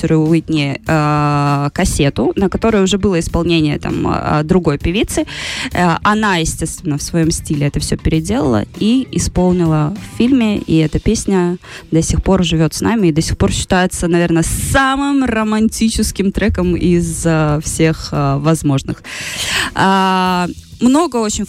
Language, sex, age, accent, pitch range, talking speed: Russian, female, 20-39, native, 160-205 Hz, 135 wpm